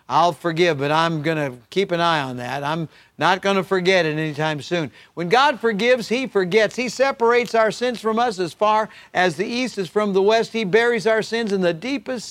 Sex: male